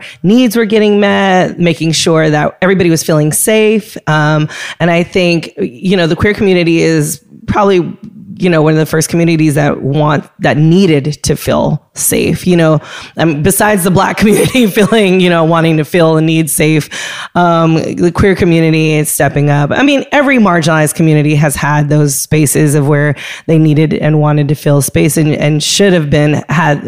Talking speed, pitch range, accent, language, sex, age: 185 wpm, 150-190 Hz, American, English, female, 20-39